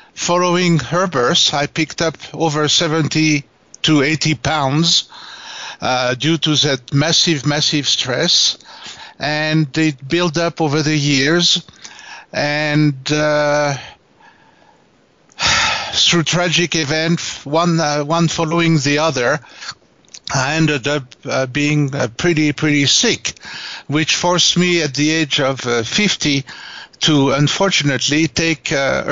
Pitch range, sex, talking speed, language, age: 140-165 Hz, male, 120 wpm, English, 60-79